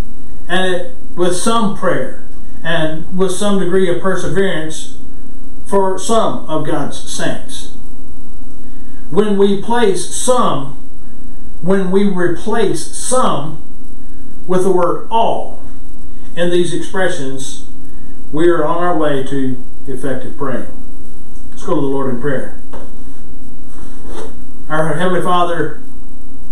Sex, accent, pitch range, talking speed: male, American, 155-195 Hz, 110 wpm